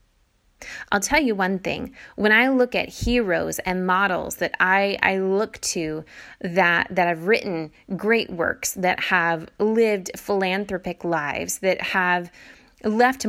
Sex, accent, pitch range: female, American, 170-210 Hz